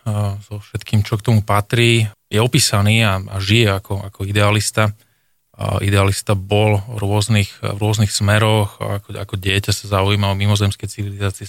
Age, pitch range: 20-39, 100-115 Hz